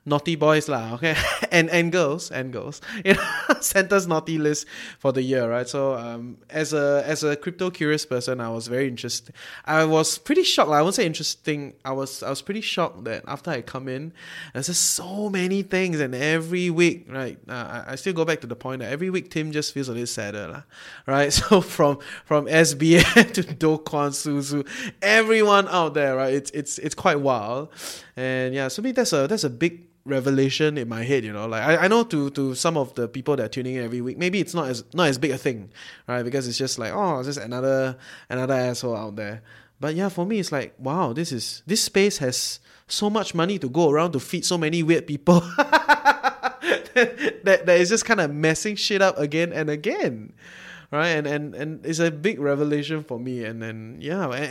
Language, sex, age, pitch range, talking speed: English, male, 20-39, 130-175 Hz, 220 wpm